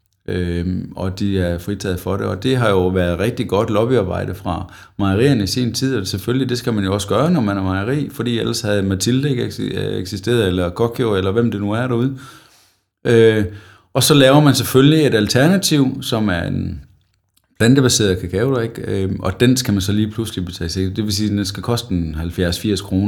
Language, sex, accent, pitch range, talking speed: Danish, male, native, 90-115 Hz, 210 wpm